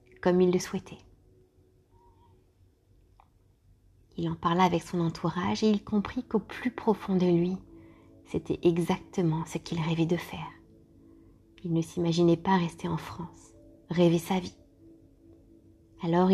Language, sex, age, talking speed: French, female, 20-39, 130 wpm